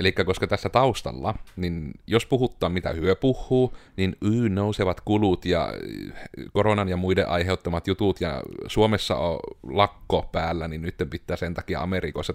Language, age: Finnish, 30-49